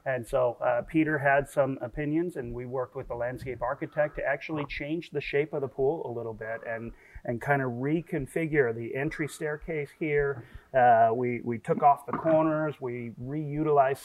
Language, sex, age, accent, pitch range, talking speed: English, male, 30-49, American, 125-150 Hz, 185 wpm